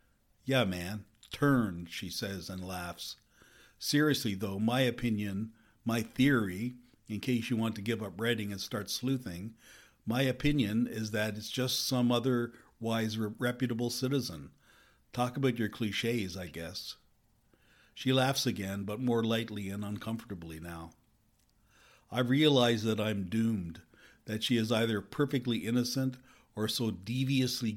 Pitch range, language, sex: 105-120 Hz, English, male